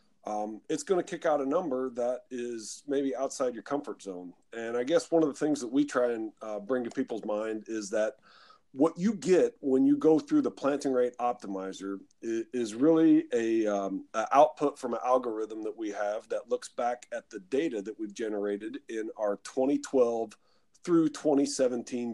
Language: English